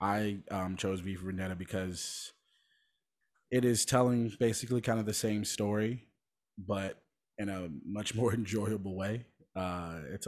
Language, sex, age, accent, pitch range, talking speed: English, male, 20-39, American, 95-115 Hz, 145 wpm